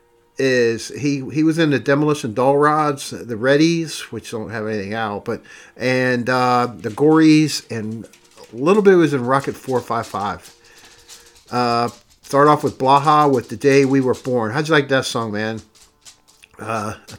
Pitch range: 115-145 Hz